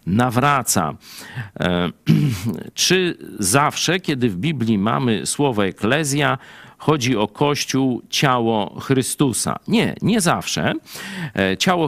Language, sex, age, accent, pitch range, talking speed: Polish, male, 50-69, native, 110-150 Hz, 95 wpm